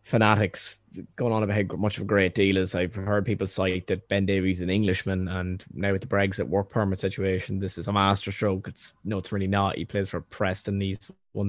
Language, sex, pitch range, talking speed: English, male, 95-115 Hz, 235 wpm